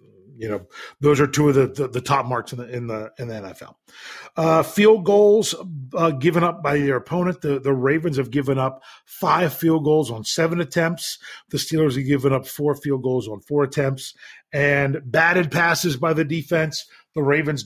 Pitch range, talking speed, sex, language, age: 135-175 Hz, 195 wpm, male, English, 40-59